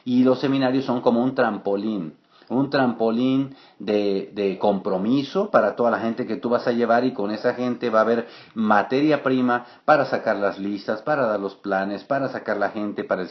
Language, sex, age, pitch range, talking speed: English, male, 50-69, 100-130 Hz, 200 wpm